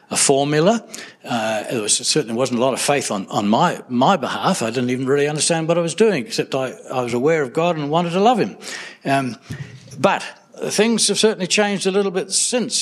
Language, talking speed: English, 225 wpm